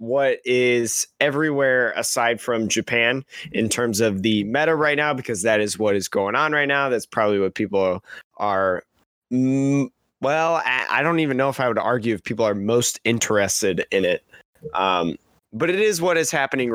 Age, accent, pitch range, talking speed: 20-39, American, 115-155 Hz, 180 wpm